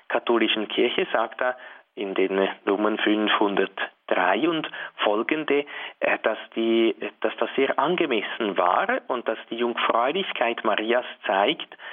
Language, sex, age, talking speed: German, male, 40-59, 110 wpm